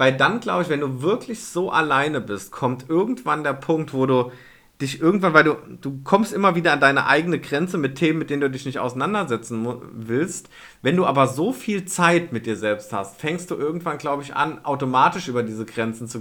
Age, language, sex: 40-59, German, male